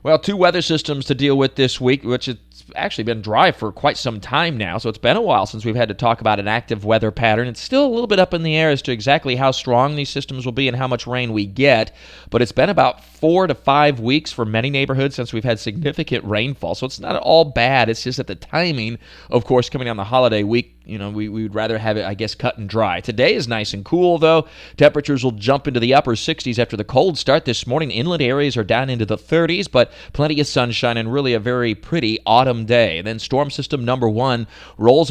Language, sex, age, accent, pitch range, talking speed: English, male, 30-49, American, 115-145 Hz, 250 wpm